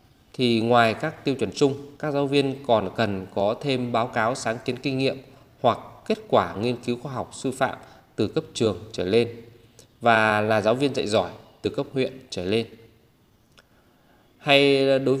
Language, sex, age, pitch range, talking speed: Vietnamese, male, 20-39, 110-135 Hz, 180 wpm